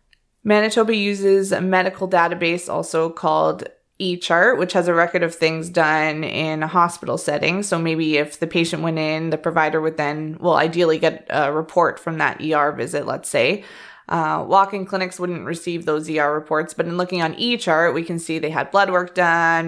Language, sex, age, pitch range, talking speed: English, female, 20-39, 155-180 Hz, 190 wpm